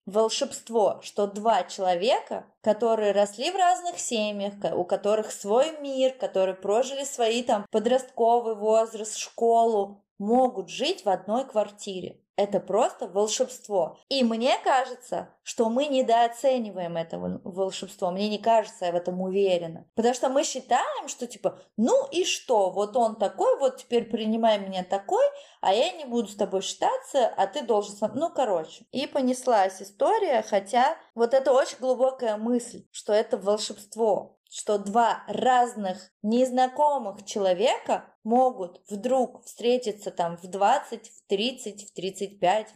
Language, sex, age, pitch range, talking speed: Russian, female, 20-39, 195-250 Hz, 140 wpm